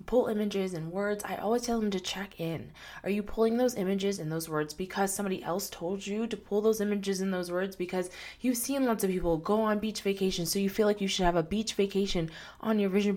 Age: 20-39